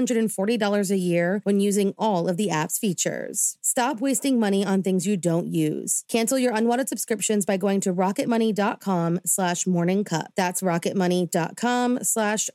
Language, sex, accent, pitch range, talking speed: English, female, American, 180-225 Hz, 145 wpm